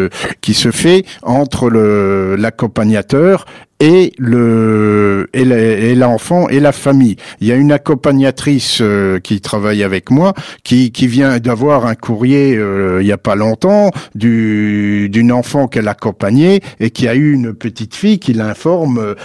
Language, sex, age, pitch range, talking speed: French, male, 50-69, 115-145 Hz, 160 wpm